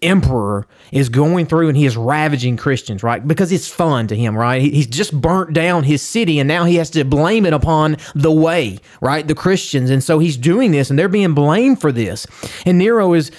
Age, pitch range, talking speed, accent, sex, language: 30-49, 135-185 Hz, 220 wpm, American, male, English